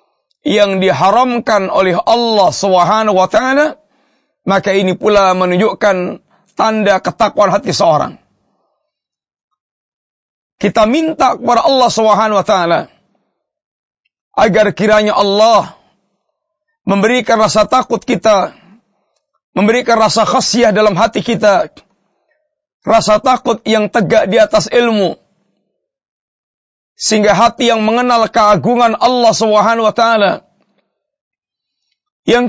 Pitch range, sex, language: 205-235 Hz, male, Malay